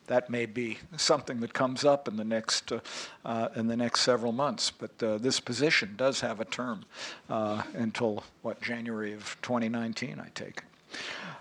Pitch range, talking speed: 110-130 Hz, 165 wpm